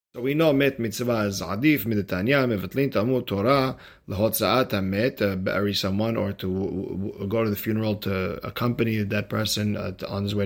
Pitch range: 105-130 Hz